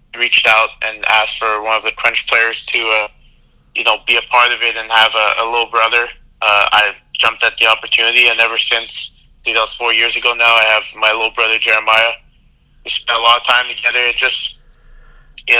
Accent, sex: American, male